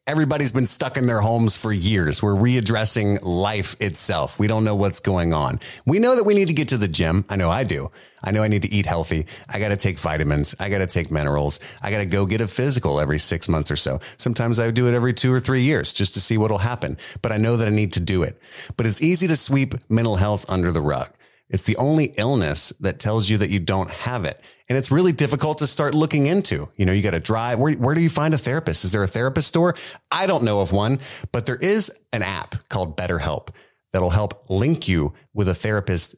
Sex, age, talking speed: male, 30-49, 250 wpm